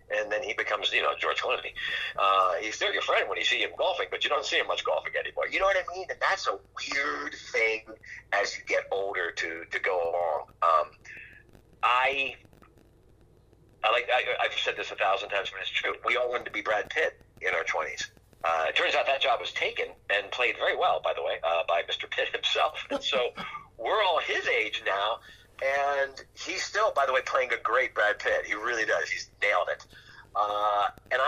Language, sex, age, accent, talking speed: English, male, 50-69, American, 220 wpm